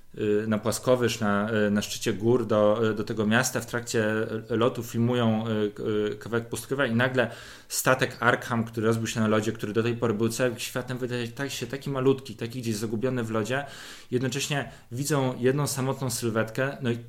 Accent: native